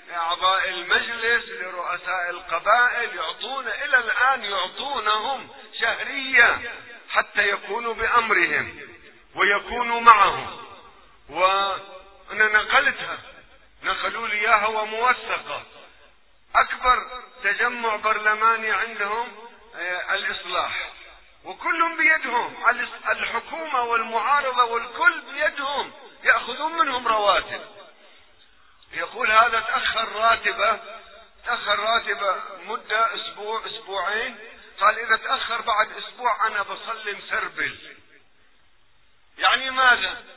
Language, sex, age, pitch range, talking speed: Arabic, male, 40-59, 215-260 Hz, 75 wpm